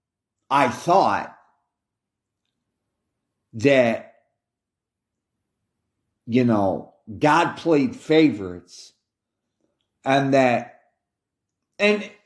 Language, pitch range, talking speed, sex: English, 110-140 Hz, 55 wpm, male